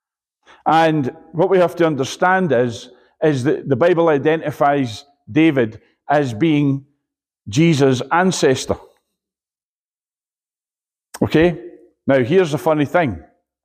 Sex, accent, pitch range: male, British, 145-190 Hz